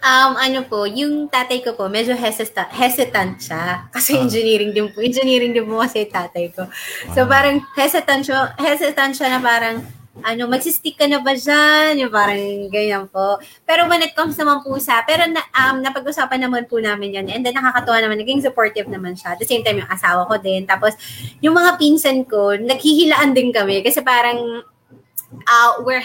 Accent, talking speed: Filipino, 185 wpm